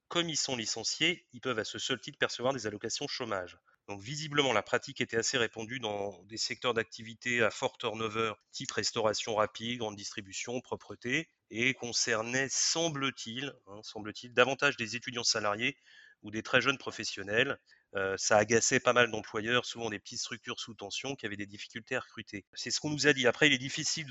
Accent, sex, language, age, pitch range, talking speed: French, male, French, 30-49, 105-130 Hz, 185 wpm